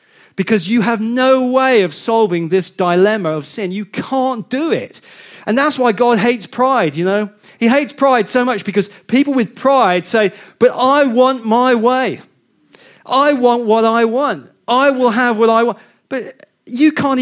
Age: 30-49